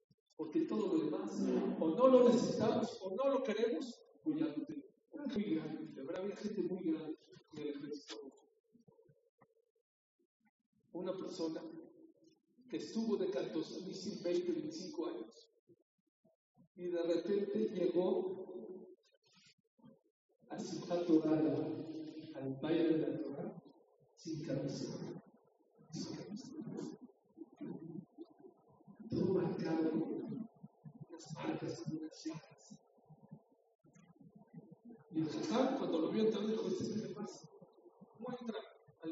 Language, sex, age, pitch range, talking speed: English, male, 50-69, 170-275 Hz, 90 wpm